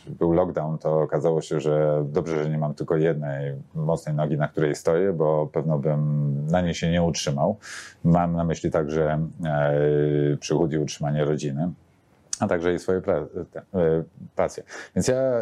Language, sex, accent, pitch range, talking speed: Polish, male, native, 75-85 Hz, 165 wpm